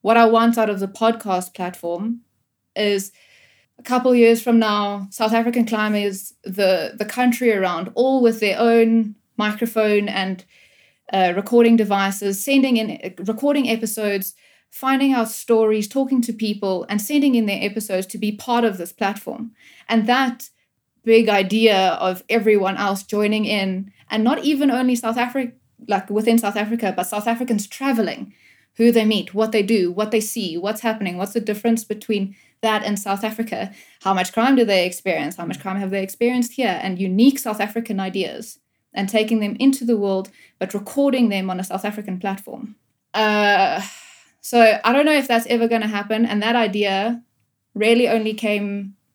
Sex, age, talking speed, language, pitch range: female, 20-39, 175 wpm, English, 200-235 Hz